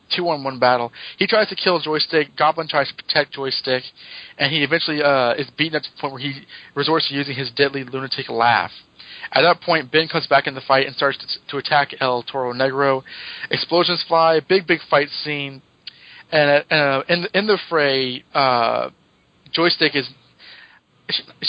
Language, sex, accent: English, male, American